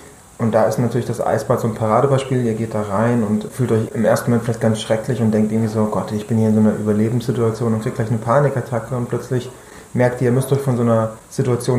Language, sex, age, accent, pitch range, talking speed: German, male, 30-49, German, 110-130 Hz, 255 wpm